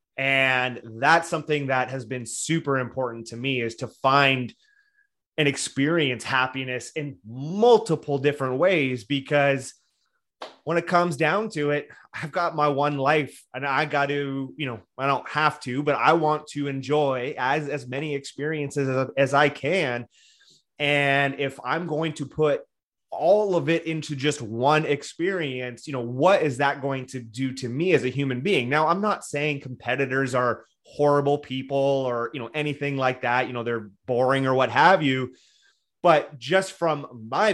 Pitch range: 130-150 Hz